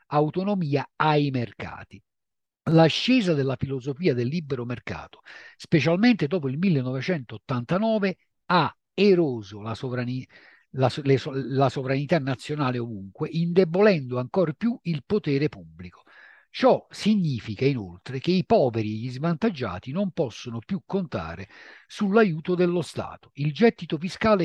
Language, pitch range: Italian, 125-180 Hz